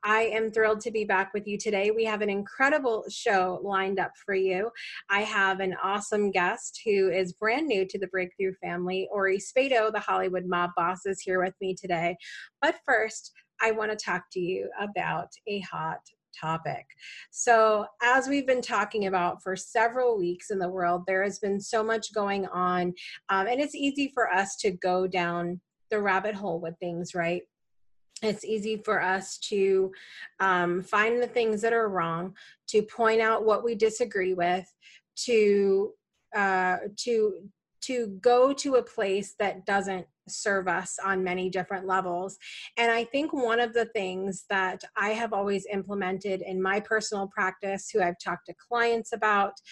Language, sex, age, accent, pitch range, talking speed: English, female, 30-49, American, 185-225 Hz, 175 wpm